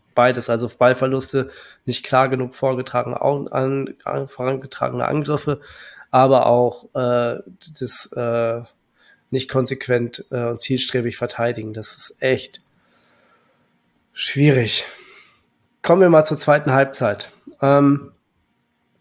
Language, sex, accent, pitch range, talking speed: German, male, German, 125-145 Hz, 105 wpm